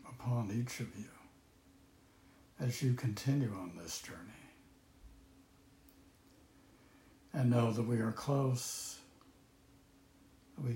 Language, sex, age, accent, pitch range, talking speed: English, male, 60-79, American, 110-125 Hz, 90 wpm